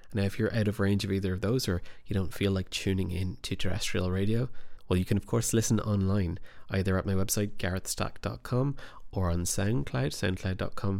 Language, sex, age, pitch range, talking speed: English, male, 20-39, 90-105 Hz, 195 wpm